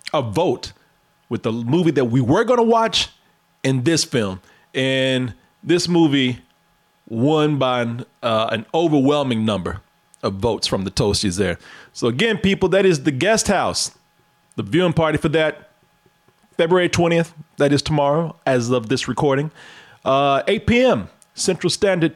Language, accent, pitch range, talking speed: English, American, 125-170 Hz, 150 wpm